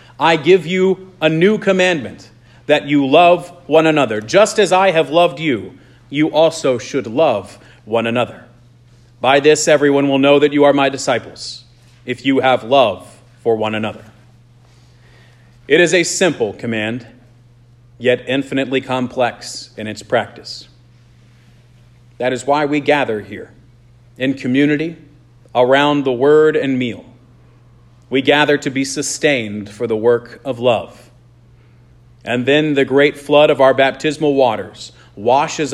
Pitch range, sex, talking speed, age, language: 120-140 Hz, male, 140 wpm, 40-59, English